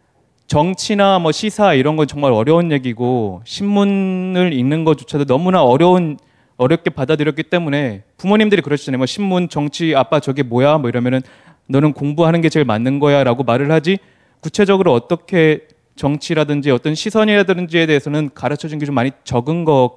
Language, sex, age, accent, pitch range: Korean, male, 30-49, native, 130-175 Hz